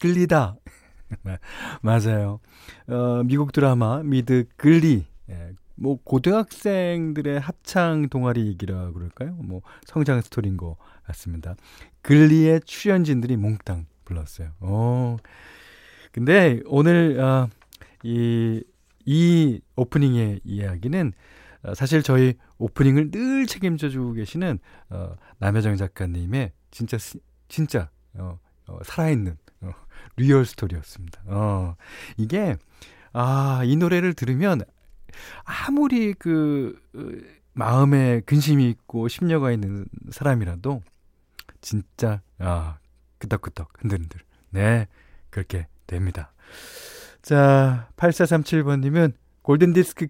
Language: Korean